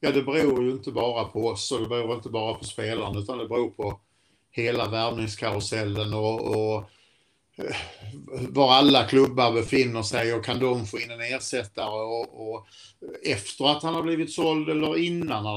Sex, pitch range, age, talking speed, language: male, 105-130 Hz, 50-69, 175 wpm, Swedish